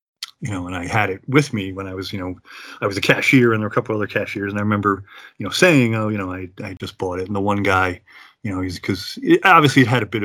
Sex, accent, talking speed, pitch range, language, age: male, American, 300 wpm, 95-115 Hz, English, 30-49